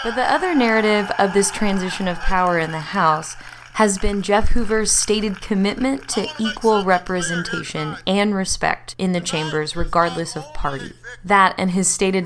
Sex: female